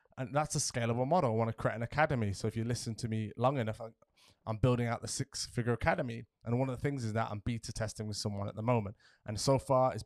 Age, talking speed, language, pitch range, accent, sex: 20-39, 260 wpm, English, 115-140 Hz, British, male